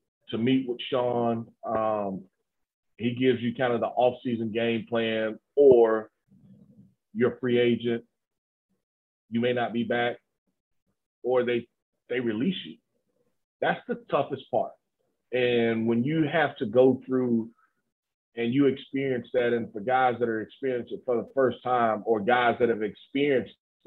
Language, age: English, 30-49